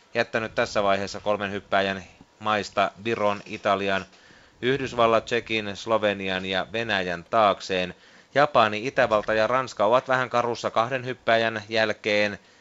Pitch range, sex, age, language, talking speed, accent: 95-110 Hz, male, 30-49, Finnish, 115 wpm, native